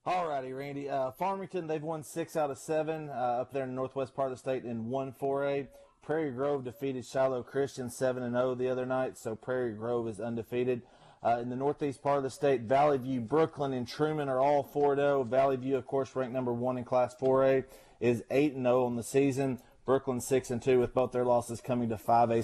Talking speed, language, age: 215 wpm, English, 30-49